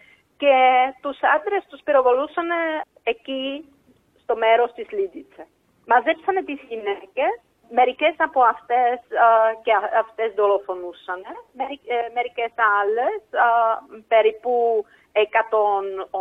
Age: 40-59